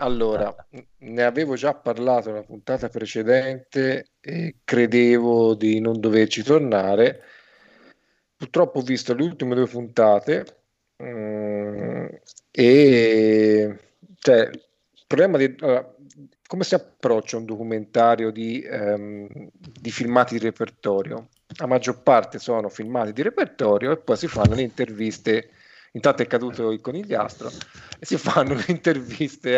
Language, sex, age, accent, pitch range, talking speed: Italian, male, 40-59, native, 110-145 Hz, 125 wpm